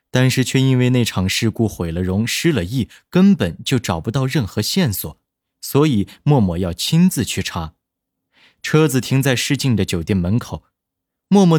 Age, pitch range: 20-39, 100-150 Hz